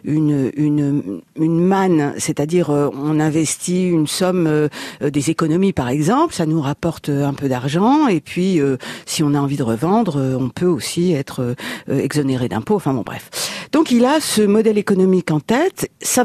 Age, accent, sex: 50-69, French, female